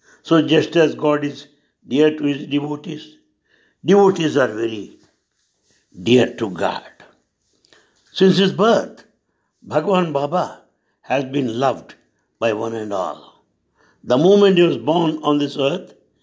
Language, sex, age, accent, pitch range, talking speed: English, male, 60-79, Indian, 140-185 Hz, 130 wpm